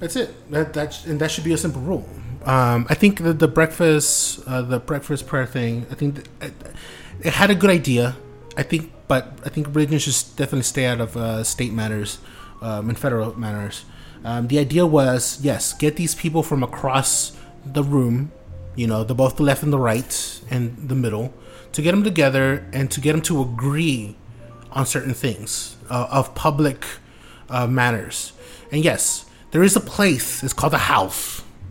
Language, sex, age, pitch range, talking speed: English, male, 30-49, 115-160 Hz, 190 wpm